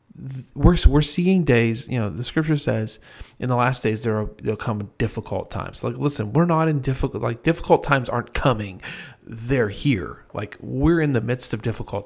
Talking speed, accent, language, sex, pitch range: 200 wpm, American, English, male, 105-130 Hz